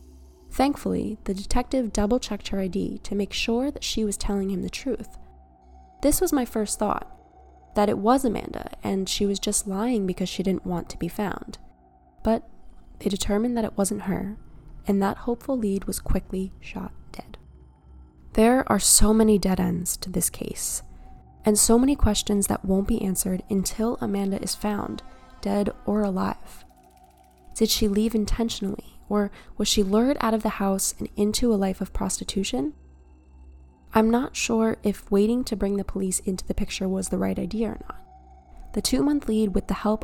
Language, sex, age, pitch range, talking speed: English, female, 10-29, 190-225 Hz, 180 wpm